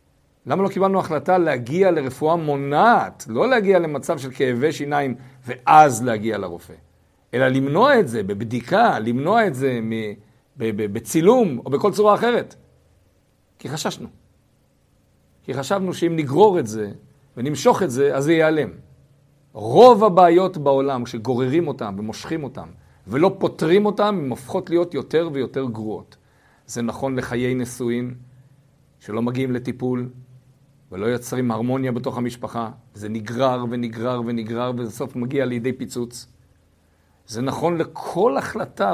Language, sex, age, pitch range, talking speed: Hebrew, male, 50-69, 115-155 Hz, 135 wpm